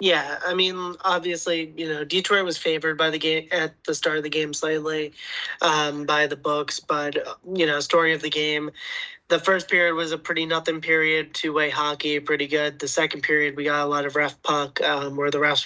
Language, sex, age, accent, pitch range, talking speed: English, male, 20-39, American, 145-165 Hz, 220 wpm